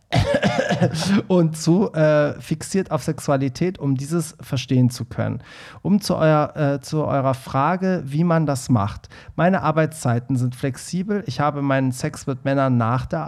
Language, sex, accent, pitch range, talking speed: German, male, German, 130-160 Hz, 155 wpm